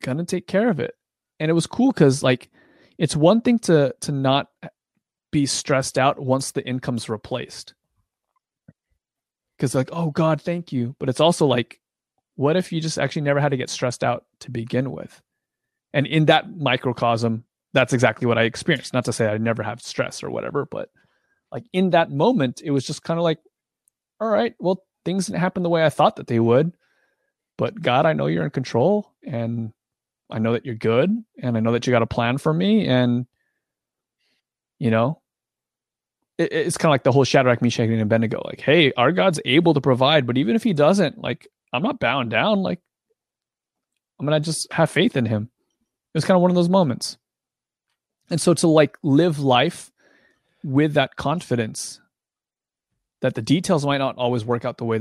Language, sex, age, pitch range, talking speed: English, male, 30-49, 120-165 Hz, 195 wpm